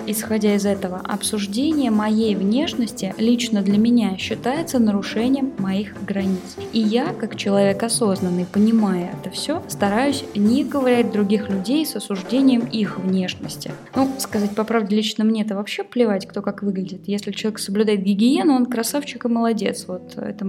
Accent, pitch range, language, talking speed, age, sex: native, 195-235 Hz, Russian, 150 wpm, 20-39, female